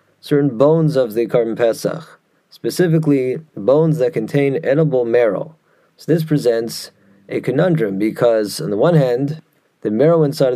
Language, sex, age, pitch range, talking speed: English, male, 30-49, 120-155 Hz, 140 wpm